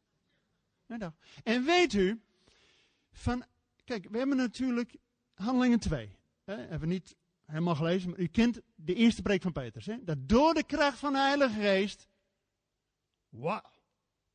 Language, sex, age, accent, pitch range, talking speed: Dutch, male, 50-69, Dutch, 175-250 Hz, 135 wpm